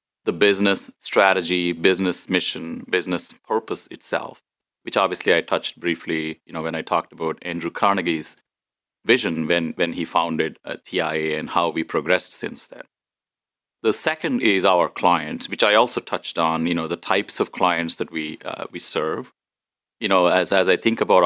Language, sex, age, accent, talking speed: English, male, 30-49, Indian, 175 wpm